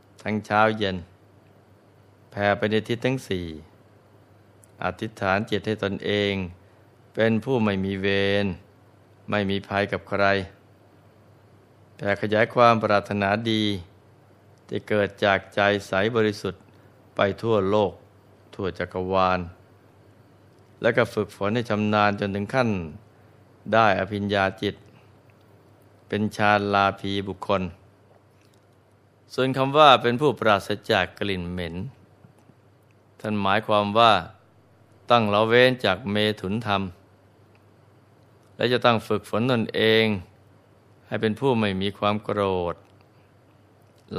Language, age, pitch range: Thai, 20-39, 100-110 Hz